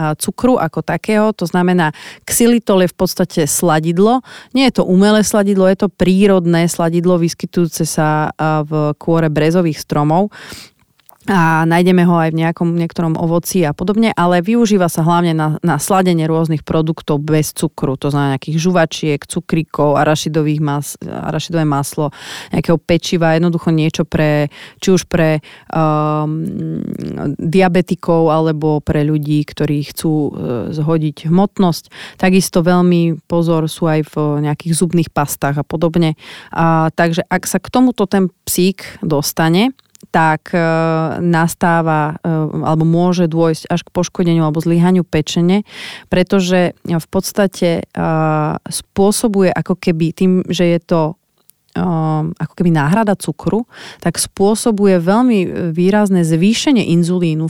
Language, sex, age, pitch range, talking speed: Slovak, female, 30-49, 155-185 Hz, 125 wpm